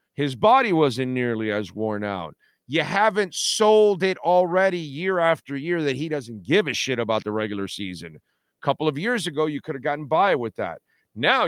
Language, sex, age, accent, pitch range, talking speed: English, male, 40-59, American, 115-175 Hz, 200 wpm